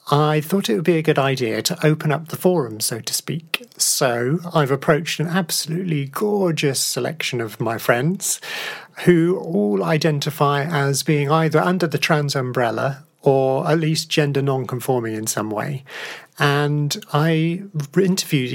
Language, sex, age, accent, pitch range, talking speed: English, male, 40-59, British, 125-165 Hz, 150 wpm